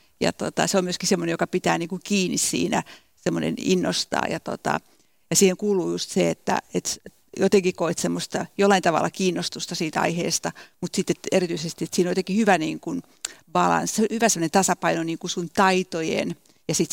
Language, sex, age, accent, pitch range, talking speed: Finnish, female, 60-79, native, 170-195 Hz, 165 wpm